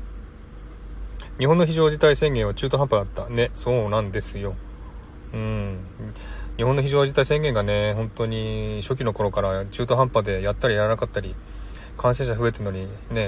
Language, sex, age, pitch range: Japanese, male, 30-49, 95-130 Hz